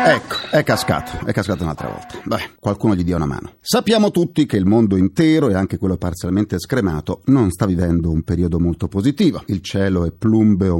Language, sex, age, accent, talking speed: Italian, male, 40-59, native, 195 wpm